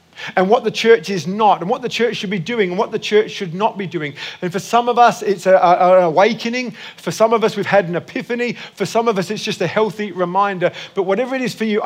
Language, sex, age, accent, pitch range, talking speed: English, male, 50-69, British, 185-225 Hz, 265 wpm